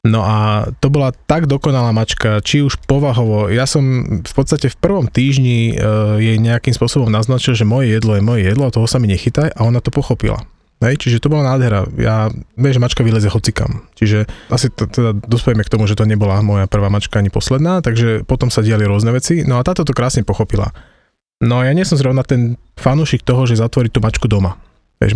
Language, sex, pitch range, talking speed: Slovak, male, 105-130 Hz, 205 wpm